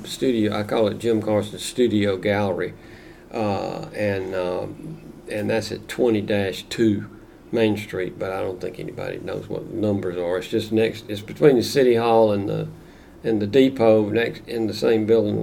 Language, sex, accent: English, male, American